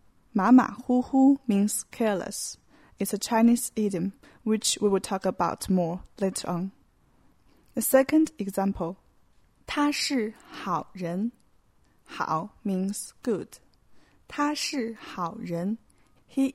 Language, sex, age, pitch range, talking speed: English, female, 20-39, 200-260 Hz, 80 wpm